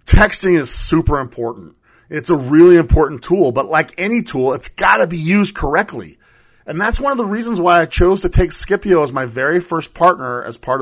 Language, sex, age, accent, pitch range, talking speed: English, male, 40-59, American, 135-185 Hz, 210 wpm